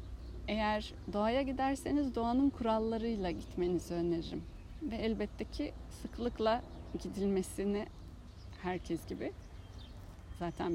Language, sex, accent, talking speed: Turkish, female, native, 85 wpm